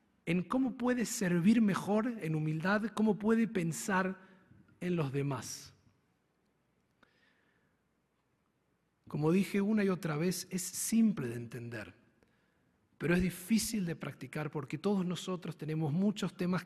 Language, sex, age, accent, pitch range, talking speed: Spanish, male, 40-59, Argentinian, 150-205 Hz, 125 wpm